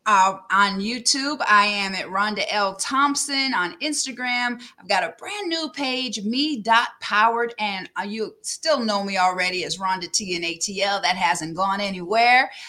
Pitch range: 195-255 Hz